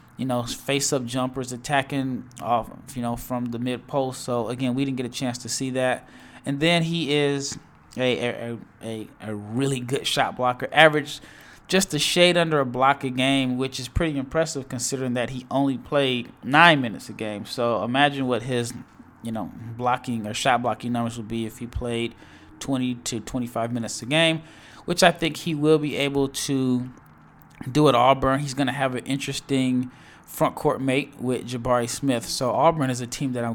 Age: 20-39